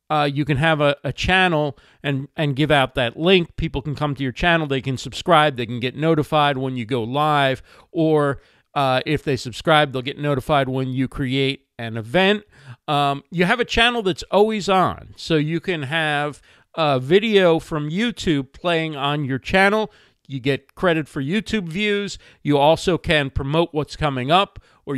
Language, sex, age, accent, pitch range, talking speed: English, male, 50-69, American, 135-175 Hz, 185 wpm